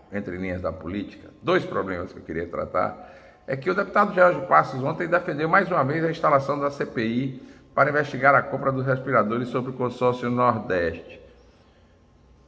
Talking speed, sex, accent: 170 wpm, male, Brazilian